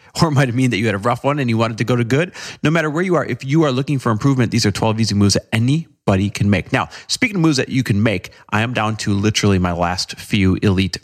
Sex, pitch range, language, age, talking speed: male, 100-120 Hz, English, 40-59, 295 wpm